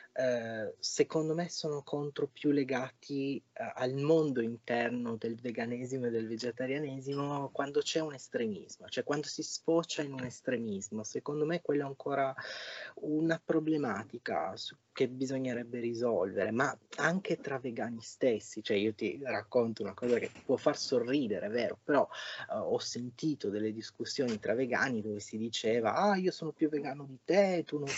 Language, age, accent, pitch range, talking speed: Italian, 30-49, native, 120-155 Hz, 165 wpm